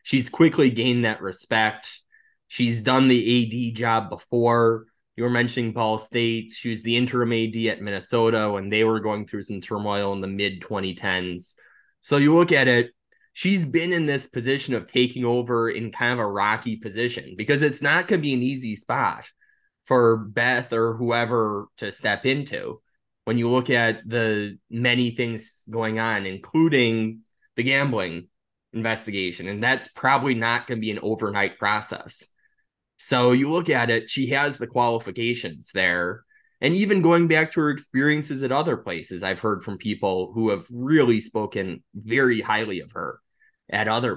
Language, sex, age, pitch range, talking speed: English, male, 20-39, 110-135 Hz, 170 wpm